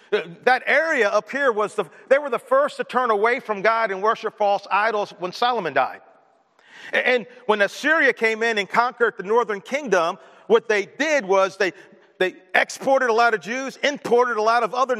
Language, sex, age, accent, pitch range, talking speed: English, male, 40-59, American, 180-245 Hz, 185 wpm